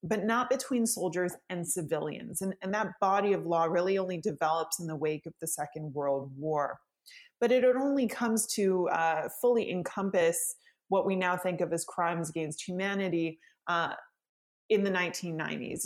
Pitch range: 170-200 Hz